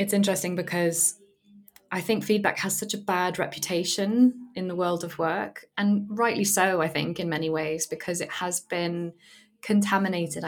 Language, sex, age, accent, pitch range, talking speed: English, female, 20-39, British, 160-185 Hz, 165 wpm